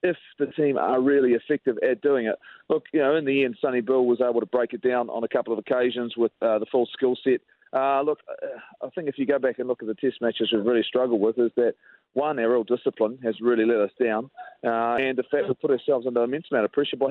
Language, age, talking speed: English, 30-49, 265 wpm